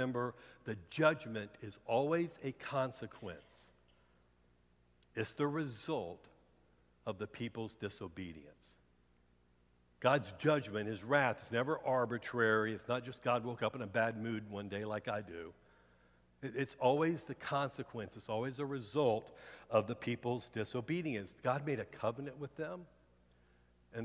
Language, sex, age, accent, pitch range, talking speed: English, male, 60-79, American, 95-140 Hz, 135 wpm